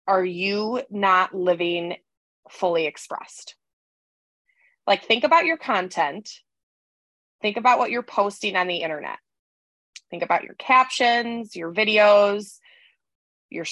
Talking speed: 115 wpm